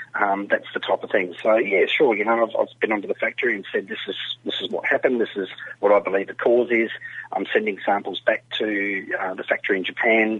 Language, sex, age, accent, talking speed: English, male, 40-59, Australian, 250 wpm